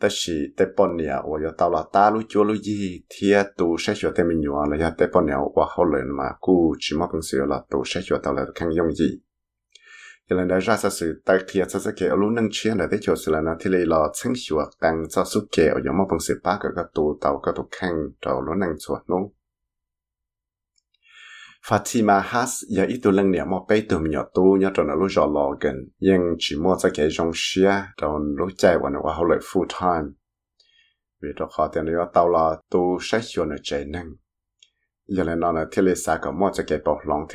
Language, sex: English, male